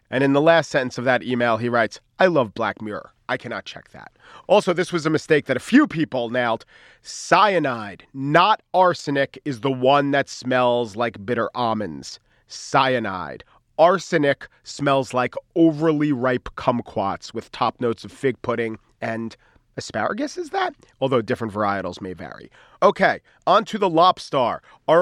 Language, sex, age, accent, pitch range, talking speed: English, male, 40-59, American, 125-180 Hz, 160 wpm